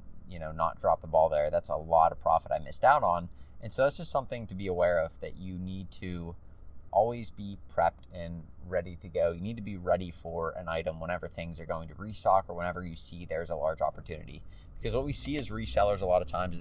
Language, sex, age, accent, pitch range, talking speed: English, male, 20-39, American, 85-105 Hz, 250 wpm